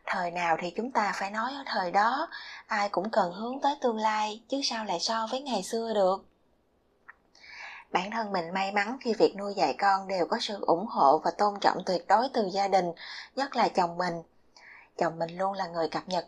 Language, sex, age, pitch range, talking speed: Vietnamese, female, 20-39, 190-235 Hz, 220 wpm